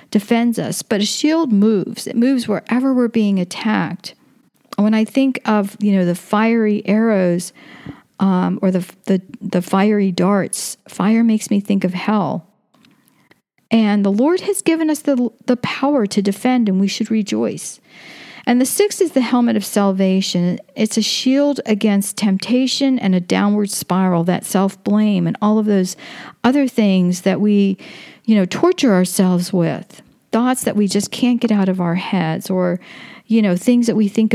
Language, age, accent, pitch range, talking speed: English, 50-69, American, 190-230 Hz, 170 wpm